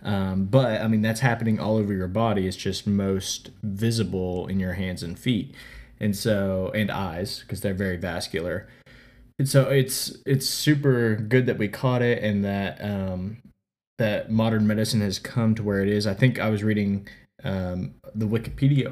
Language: English